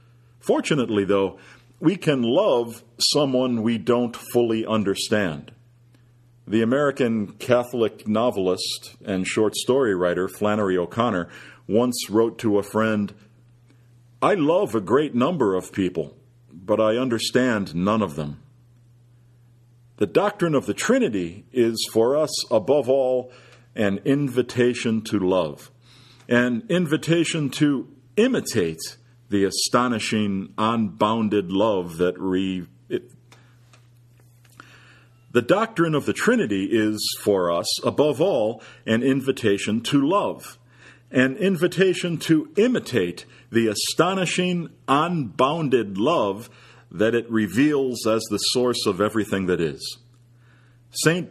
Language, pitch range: English, 110-130 Hz